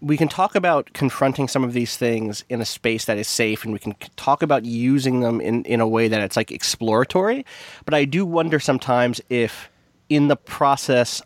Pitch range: 115-150 Hz